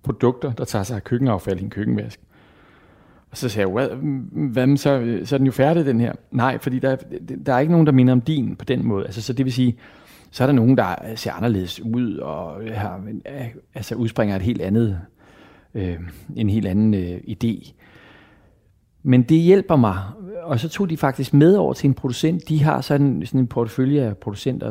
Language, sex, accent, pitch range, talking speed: Danish, male, native, 105-135 Hz, 205 wpm